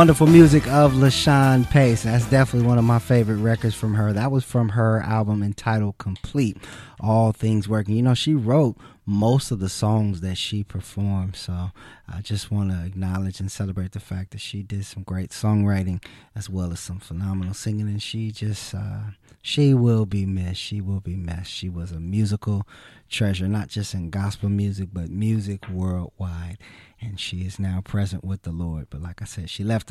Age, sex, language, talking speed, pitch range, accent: 20-39, male, English, 195 wpm, 95-115 Hz, American